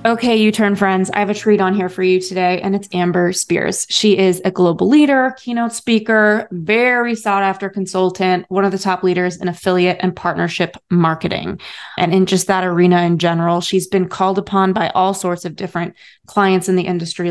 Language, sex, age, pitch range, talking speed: English, female, 20-39, 180-205 Hz, 200 wpm